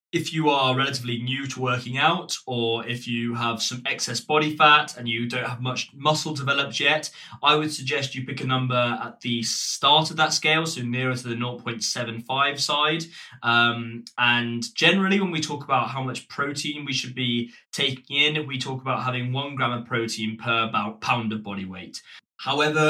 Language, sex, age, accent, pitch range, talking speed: English, male, 20-39, British, 120-145 Hz, 190 wpm